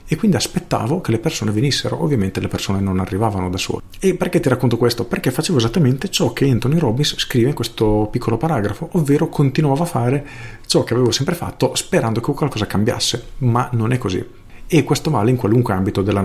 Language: Italian